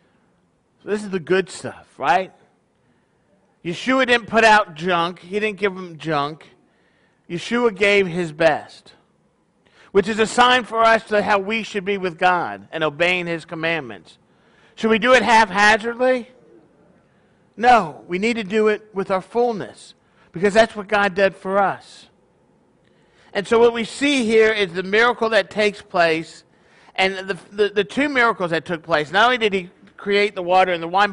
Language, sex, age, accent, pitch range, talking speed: English, male, 50-69, American, 170-225 Hz, 170 wpm